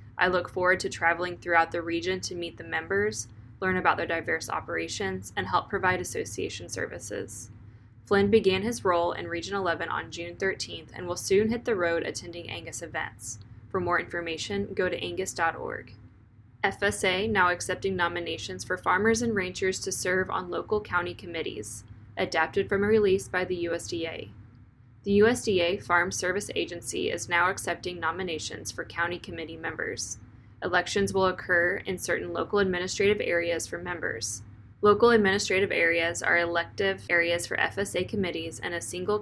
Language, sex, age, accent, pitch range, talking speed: English, female, 10-29, American, 165-195 Hz, 160 wpm